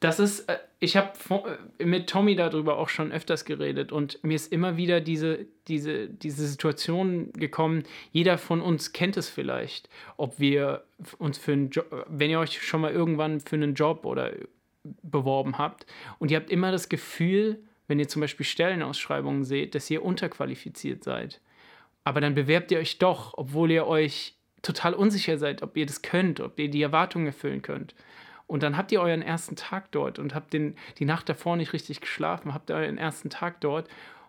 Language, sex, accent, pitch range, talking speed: German, male, German, 150-175 Hz, 185 wpm